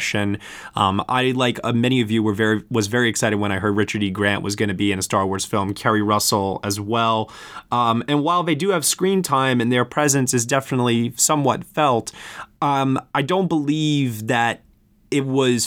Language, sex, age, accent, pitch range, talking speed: English, male, 20-39, American, 110-135 Hz, 205 wpm